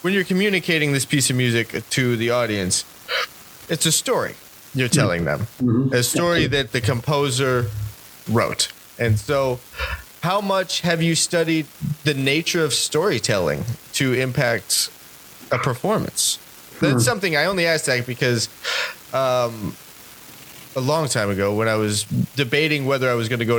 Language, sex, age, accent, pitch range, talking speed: English, male, 30-49, American, 115-155 Hz, 150 wpm